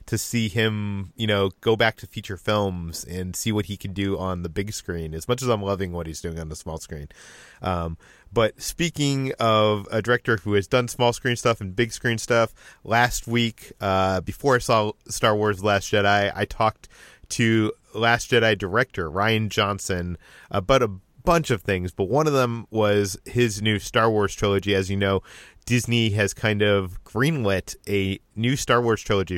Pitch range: 100-115 Hz